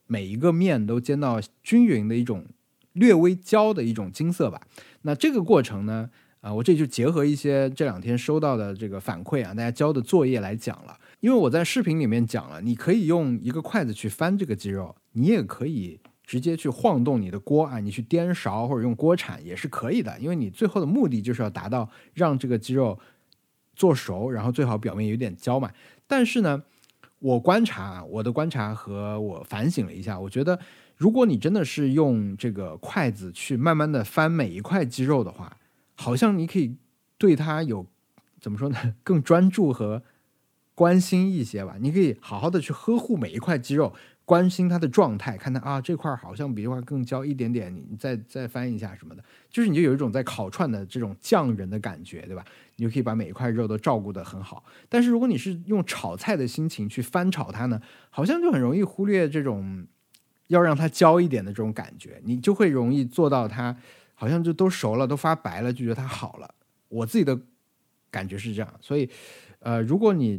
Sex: male